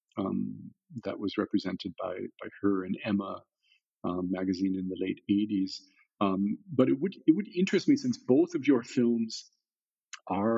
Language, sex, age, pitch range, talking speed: English, male, 50-69, 100-135 Hz, 165 wpm